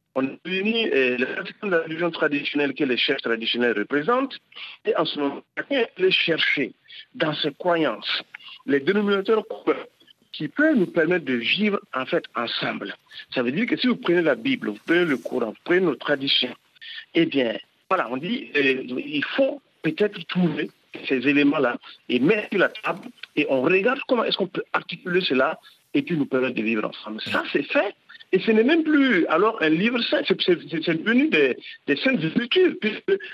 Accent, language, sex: French, French, male